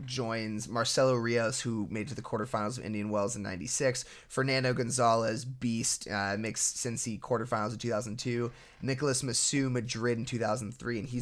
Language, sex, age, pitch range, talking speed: English, male, 20-39, 105-130 Hz, 150 wpm